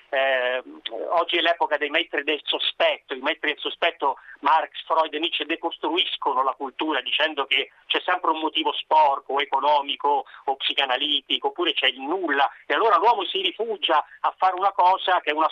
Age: 40-59